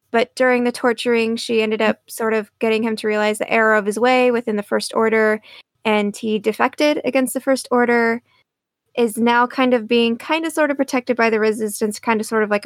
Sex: female